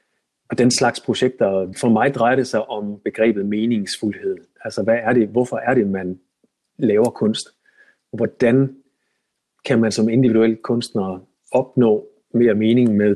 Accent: native